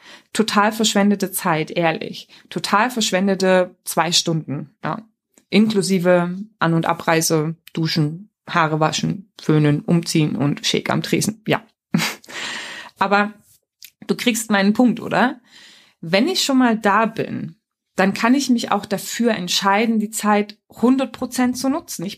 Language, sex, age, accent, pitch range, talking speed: German, female, 20-39, German, 190-235 Hz, 130 wpm